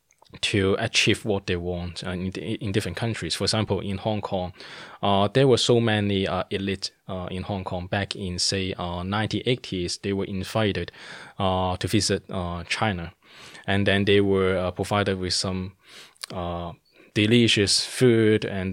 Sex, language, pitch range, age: male, Swedish, 95-110 Hz, 20-39